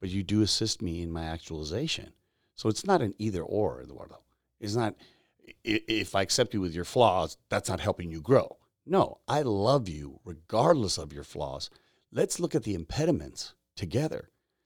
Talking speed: 175 wpm